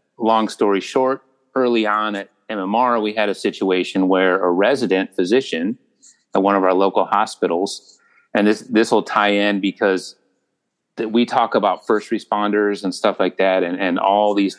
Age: 30-49